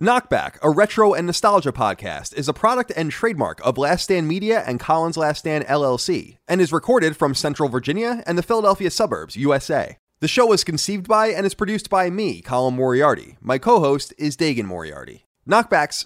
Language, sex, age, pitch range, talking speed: English, male, 30-49, 120-165 Hz, 185 wpm